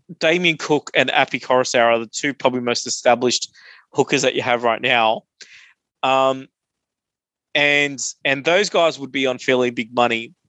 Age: 20-39